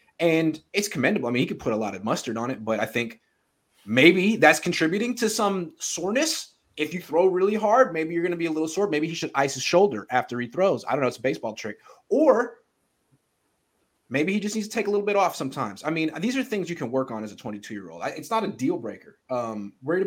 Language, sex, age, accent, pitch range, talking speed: English, male, 30-49, American, 115-185 Hz, 250 wpm